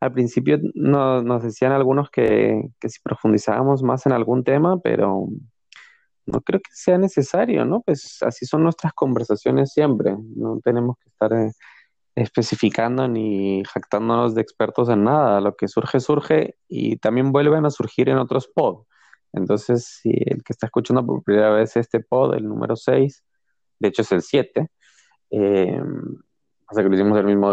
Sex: male